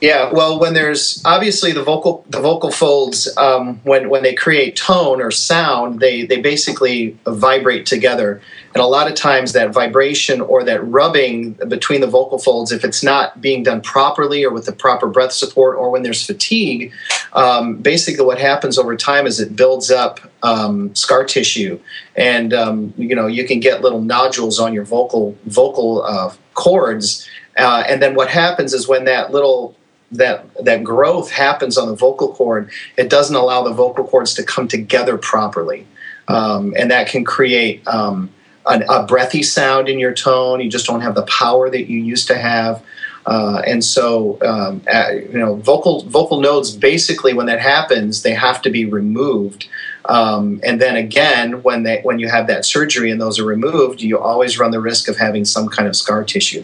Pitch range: 115-145 Hz